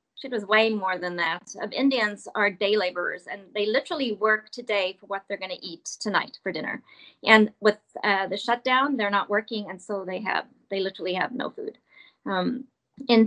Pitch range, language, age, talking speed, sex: 205-255 Hz, English, 30-49, 200 wpm, female